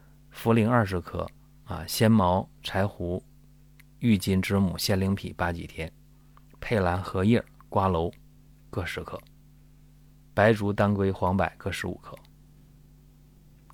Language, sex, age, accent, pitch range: Chinese, male, 30-49, native, 100-145 Hz